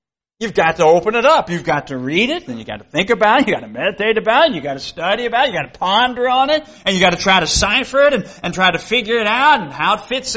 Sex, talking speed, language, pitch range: male, 320 wpm, English, 185-260 Hz